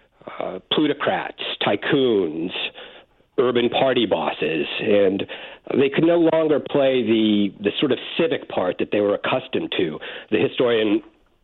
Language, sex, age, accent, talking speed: English, male, 50-69, American, 130 wpm